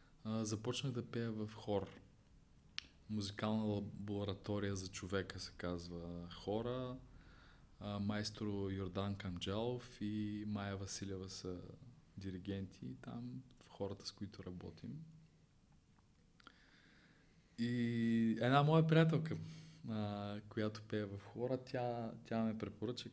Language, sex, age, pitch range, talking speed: Bulgarian, male, 20-39, 105-130 Hz, 105 wpm